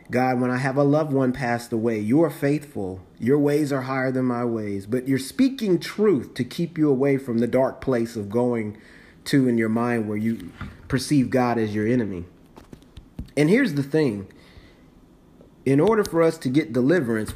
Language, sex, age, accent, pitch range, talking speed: English, male, 30-49, American, 115-150 Hz, 190 wpm